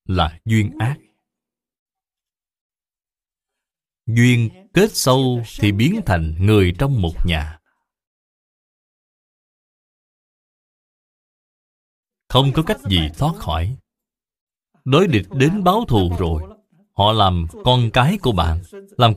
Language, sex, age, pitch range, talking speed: Vietnamese, male, 20-39, 95-160 Hz, 100 wpm